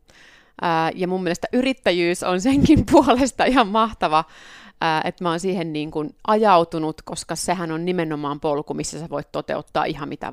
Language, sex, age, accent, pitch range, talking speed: Finnish, female, 30-49, native, 165-215 Hz, 155 wpm